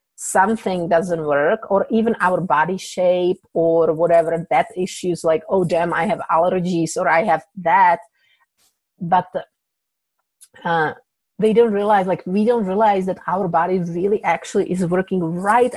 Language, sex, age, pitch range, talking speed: English, female, 30-49, 165-190 Hz, 150 wpm